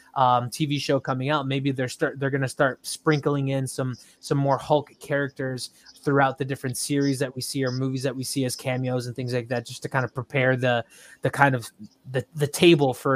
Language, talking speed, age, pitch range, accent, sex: English, 225 wpm, 20-39, 125-155 Hz, American, male